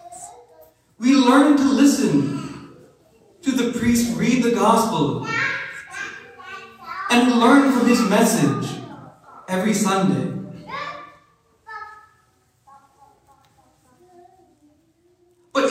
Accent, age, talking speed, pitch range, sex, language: American, 40-59, 70 wpm, 220-275 Hz, male, English